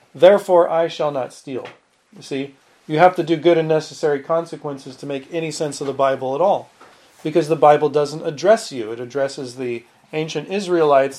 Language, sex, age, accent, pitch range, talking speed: English, male, 40-59, American, 150-185 Hz, 190 wpm